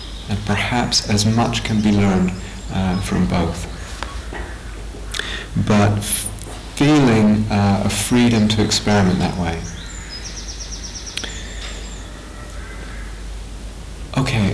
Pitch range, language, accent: 90-110 Hz, English, British